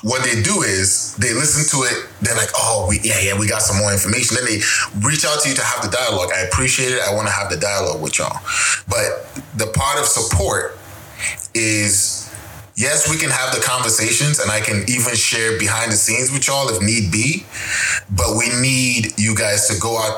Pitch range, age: 100-130 Hz, 20-39